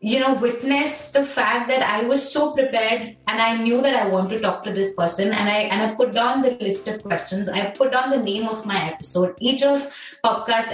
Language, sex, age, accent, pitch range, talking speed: Hindi, female, 20-39, native, 215-300 Hz, 235 wpm